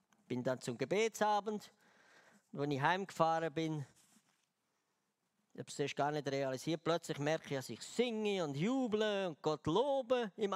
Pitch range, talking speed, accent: 160-245 Hz, 155 wpm, Austrian